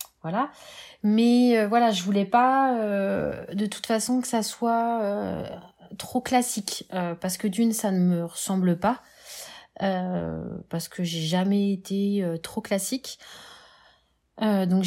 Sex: female